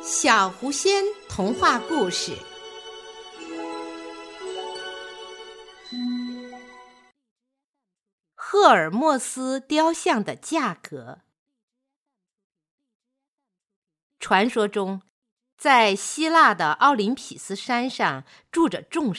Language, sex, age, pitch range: Chinese, female, 50-69, 190-285 Hz